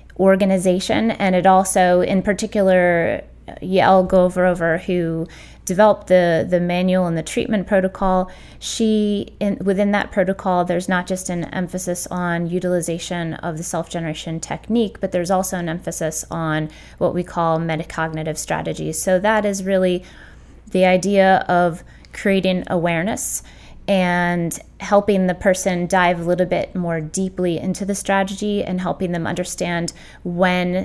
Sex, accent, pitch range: female, American, 170-190 Hz